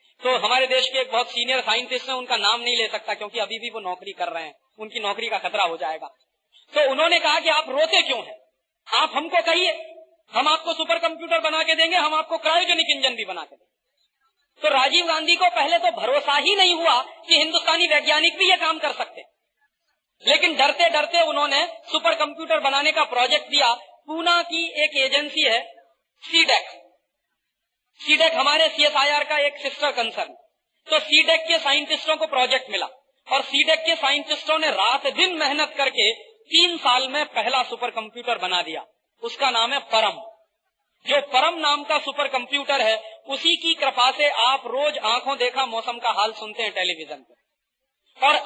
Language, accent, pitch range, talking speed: Hindi, native, 255-320 Hz, 180 wpm